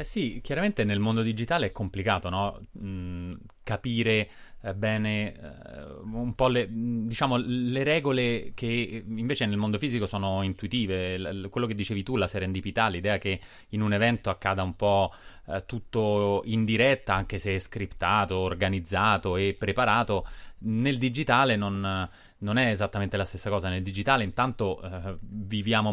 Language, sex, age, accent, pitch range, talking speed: Italian, male, 30-49, native, 95-115 Hz, 145 wpm